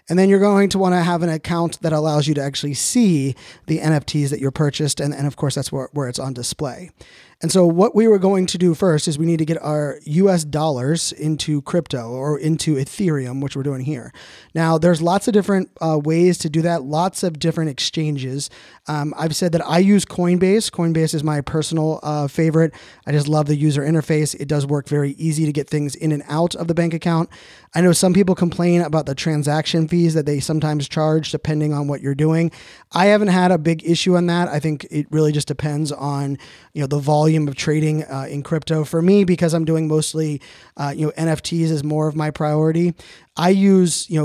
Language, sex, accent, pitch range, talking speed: English, male, American, 150-170 Hz, 220 wpm